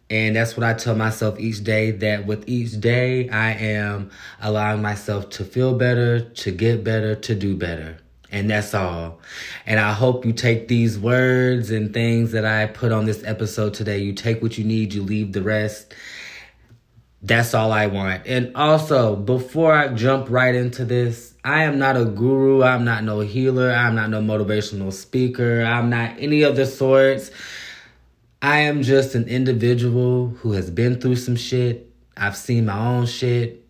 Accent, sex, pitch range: American, male, 105-125 Hz